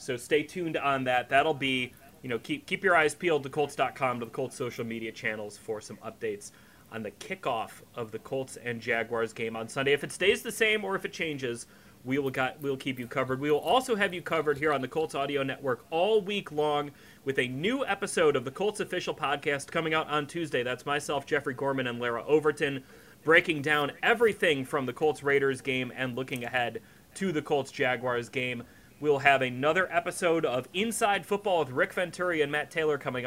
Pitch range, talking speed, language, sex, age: 125-165 Hz, 210 wpm, English, male, 30-49